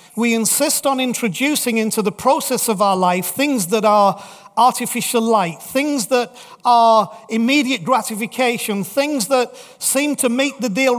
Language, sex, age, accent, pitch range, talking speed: English, male, 40-59, British, 210-255 Hz, 145 wpm